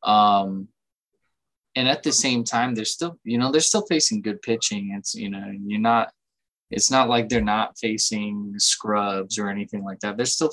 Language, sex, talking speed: English, male, 190 wpm